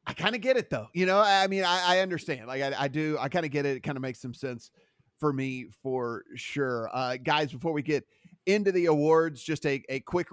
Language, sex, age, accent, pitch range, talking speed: English, male, 30-49, American, 145-175 Hz, 255 wpm